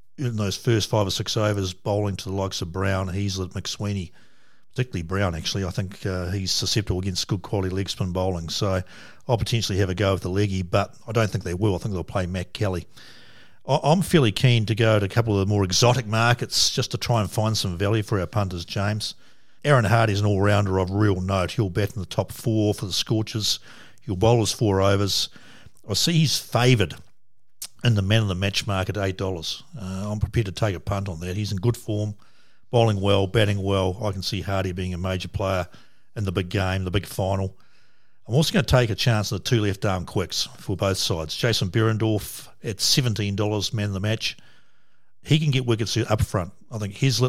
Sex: male